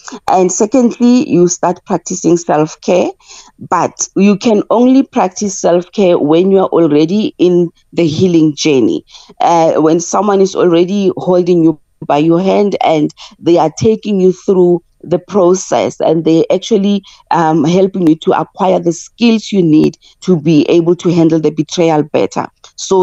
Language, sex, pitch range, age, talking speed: English, female, 165-195 Hz, 40-59, 160 wpm